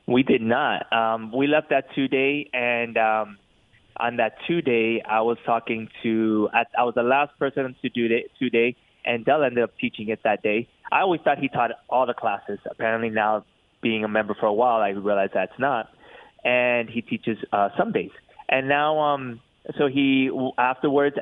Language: English